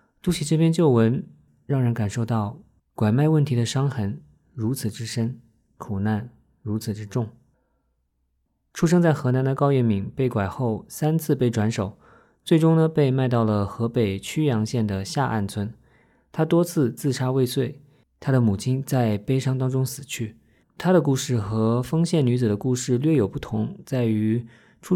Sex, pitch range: male, 110-145 Hz